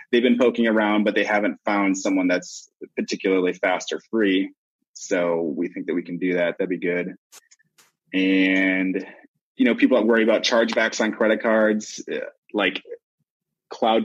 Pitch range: 100-125 Hz